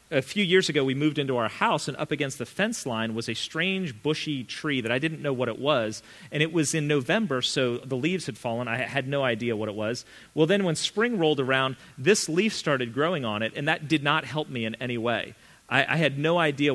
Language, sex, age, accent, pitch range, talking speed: English, male, 40-59, American, 120-160 Hz, 250 wpm